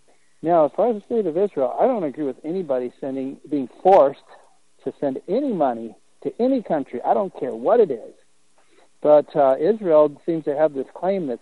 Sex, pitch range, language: male, 130-170 Hz, English